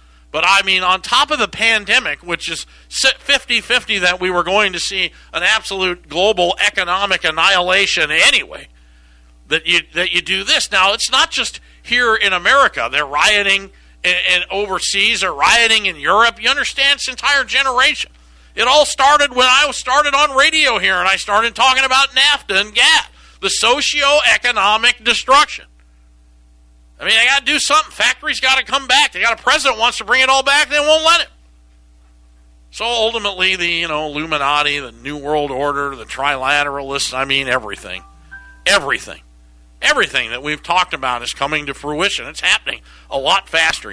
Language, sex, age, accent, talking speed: English, male, 50-69, American, 175 wpm